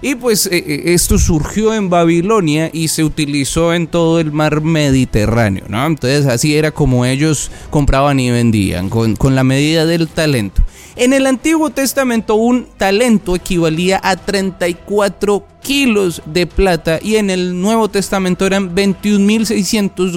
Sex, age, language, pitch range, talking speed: male, 30-49, Spanish, 155-210 Hz, 145 wpm